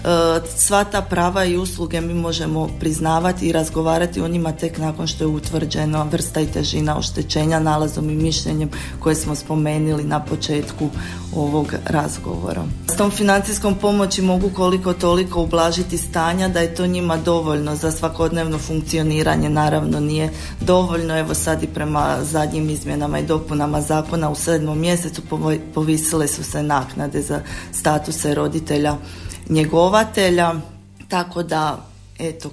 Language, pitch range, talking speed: Croatian, 150-170 Hz, 135 wpm